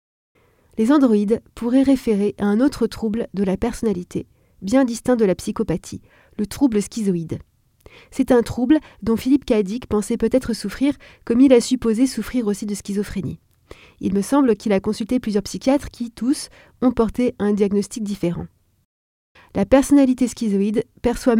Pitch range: 200-245 Hz